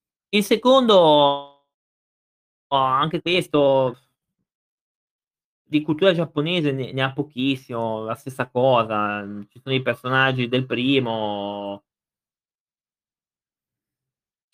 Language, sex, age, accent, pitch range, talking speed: Italian, male, 30-49, native, 115-165 Hz, 90 wpm